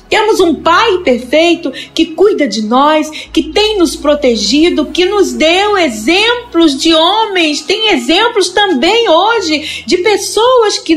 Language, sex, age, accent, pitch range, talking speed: Portuguese, female, 40-59, Brazilian, 295-360 Hz, 135 wpm